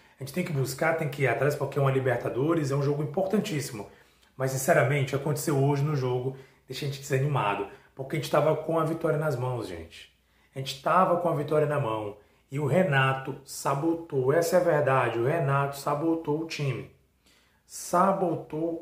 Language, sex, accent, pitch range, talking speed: Portuguese, male, Brazilian, 135-165 Hz, 195 wpm